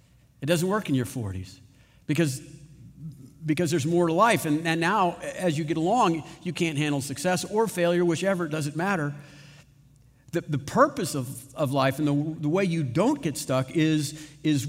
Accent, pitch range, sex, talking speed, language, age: American, 135-170 Hz, male, 185 wpm, English, 50-69